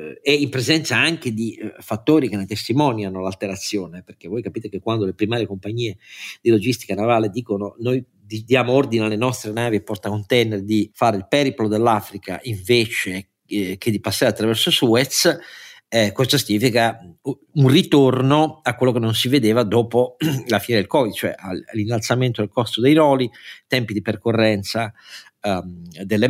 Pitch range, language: 110-150 Hz, Italian